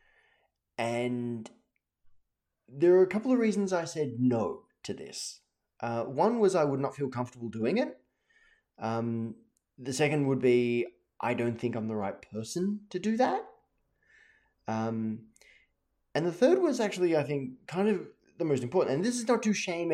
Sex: male